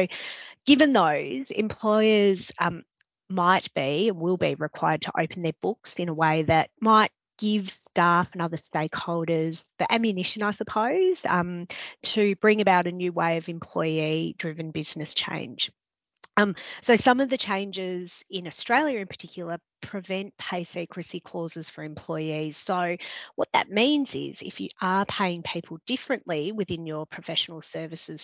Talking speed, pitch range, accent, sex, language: 150 wpm, 165-215 Hz, Australian, female, English